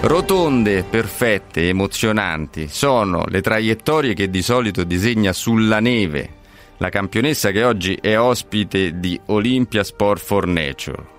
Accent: native